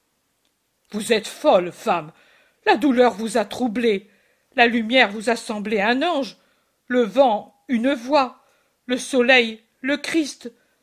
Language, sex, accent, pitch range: French, female, French, 235-300 Hz